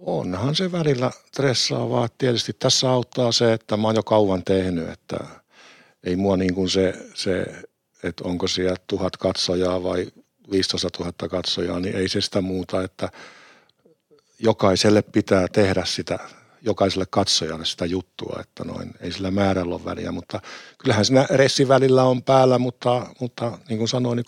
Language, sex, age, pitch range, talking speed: Finnish, male, 60-79, 95-120 Hz, 155 wpm